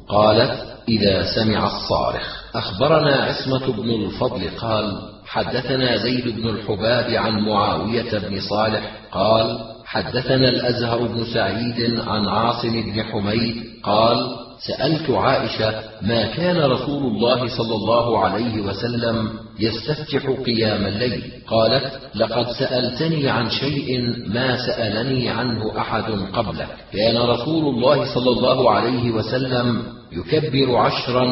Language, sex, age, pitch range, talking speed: Arabic, male, 40-59, 110-125 Hz, 115 wpm